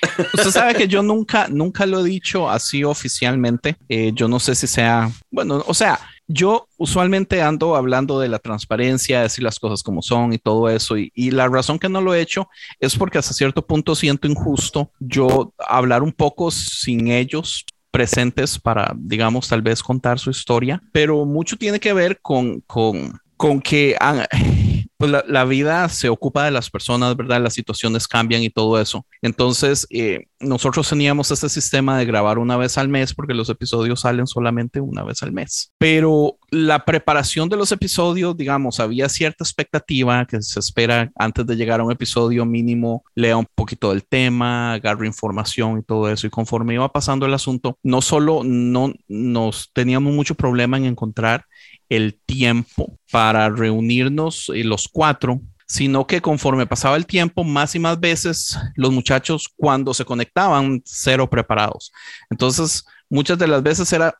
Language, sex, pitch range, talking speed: Spanish, male, 115-150 Hz, 175 wpm